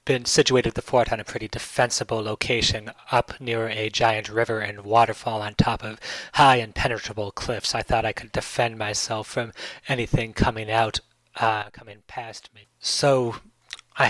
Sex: male